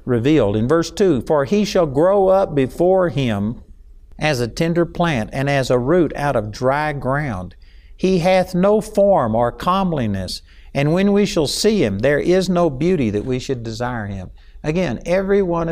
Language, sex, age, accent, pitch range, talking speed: English, male, 60-79, American, 110-165 Hz, 180 wpm